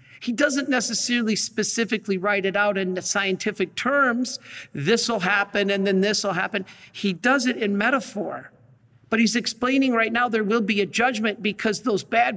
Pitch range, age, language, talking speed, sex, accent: 175-230 Hz, 50-69, English, 180 wpm, male, American